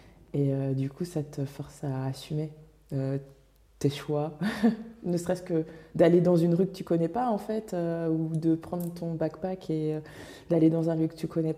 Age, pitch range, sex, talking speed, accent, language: 20-39, 150-170 Hz, female, 220 wpm, French, French